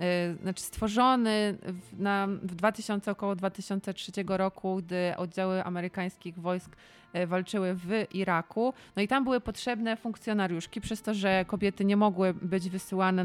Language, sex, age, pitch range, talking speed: Polish, female, 20-39, 180-215 Hz, 130 wpm